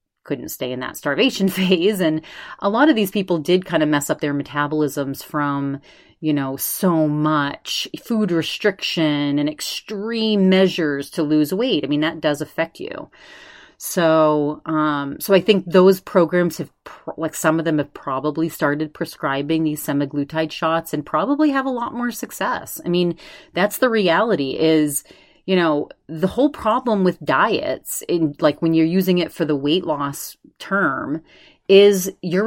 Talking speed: 165 wpm